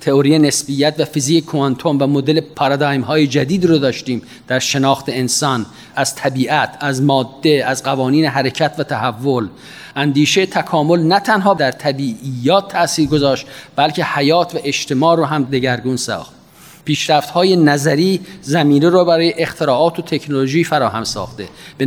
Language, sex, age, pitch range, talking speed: Persian, male, 40-59, 135-165 Hz, 145 wpm